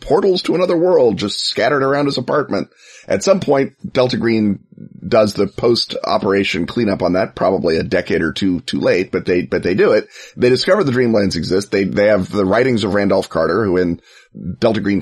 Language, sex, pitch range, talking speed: English, male, 95-115 Hz, 205 wpm